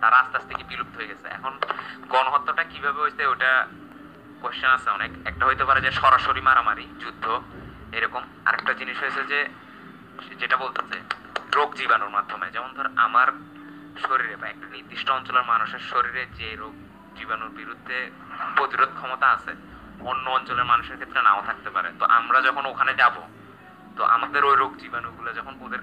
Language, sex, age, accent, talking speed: Bengali, male, 30-49, native, 85 wpm